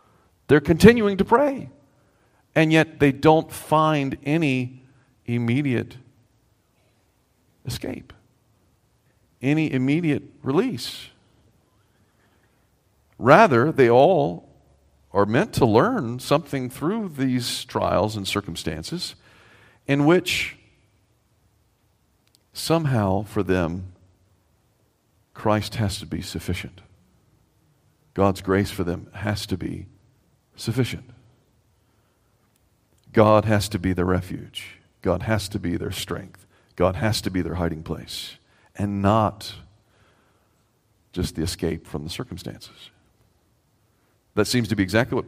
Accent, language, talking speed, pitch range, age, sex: American, English, 105 wpm, 95-125 Hz, 50-69, male